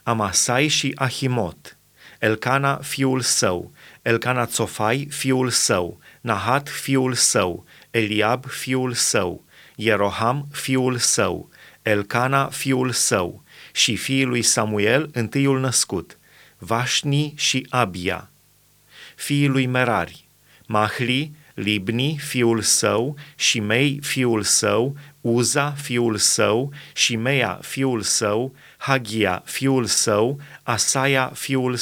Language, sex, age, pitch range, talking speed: Romanian, male, 30-49, 115-135 Hz, 100 wpm